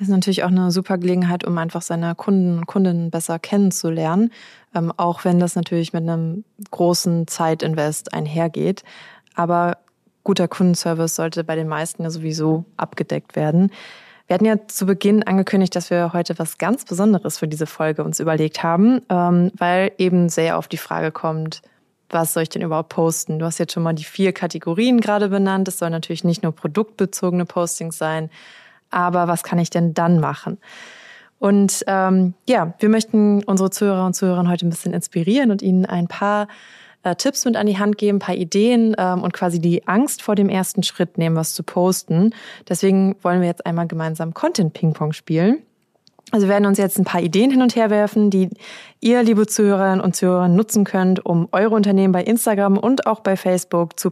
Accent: German